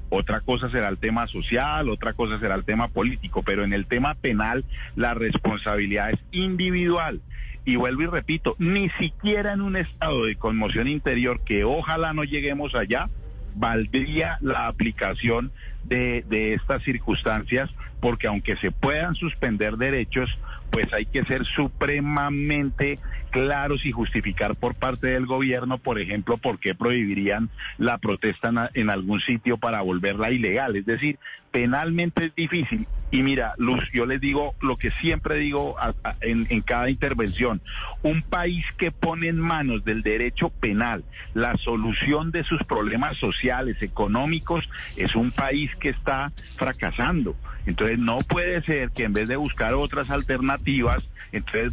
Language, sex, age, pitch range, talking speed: Spanish, male, 50-69, 110-150 Hz, 150 wpm